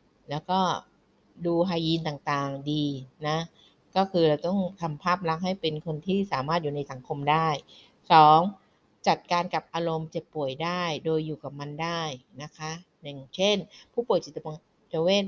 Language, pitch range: Thai, 145-175 Hz